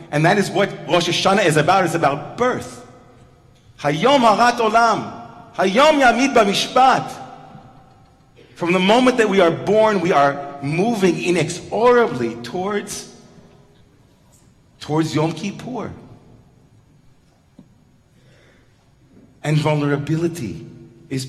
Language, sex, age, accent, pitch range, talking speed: English, male, 40-59, American, 125-165 Hz, 80 wpm